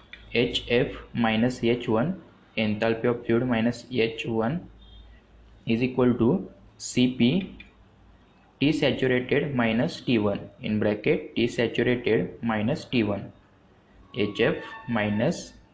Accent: Indian